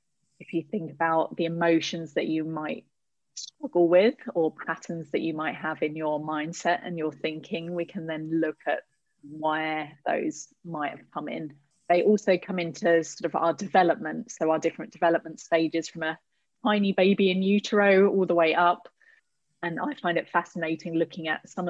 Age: 30-49